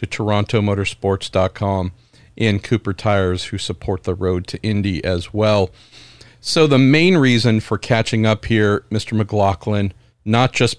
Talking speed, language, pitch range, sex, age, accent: 140 wpm, English, 105-125 Hz, male, 50-69, American